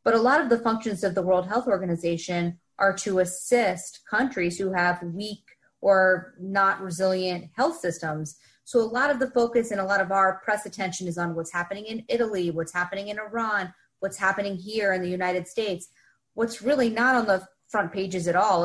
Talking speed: 200 wpm